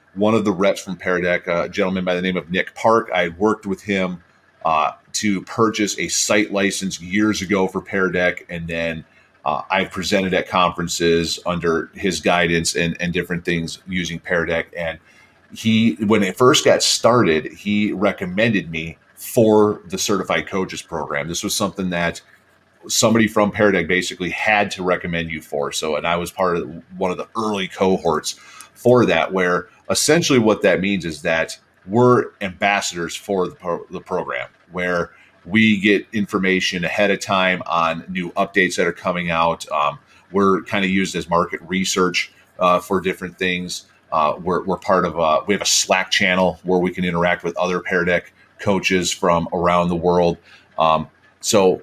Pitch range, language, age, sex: 85-100 Hz, English, 40-59, male